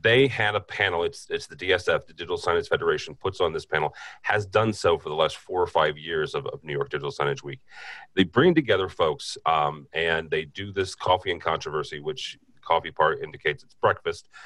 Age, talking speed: 30-49, 210 wpm